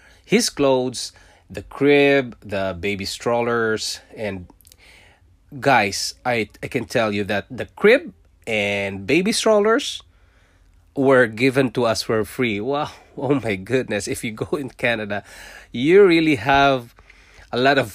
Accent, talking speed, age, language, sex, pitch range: Filipino, 135 wpm, 20-39, English, male, 100-125 Hz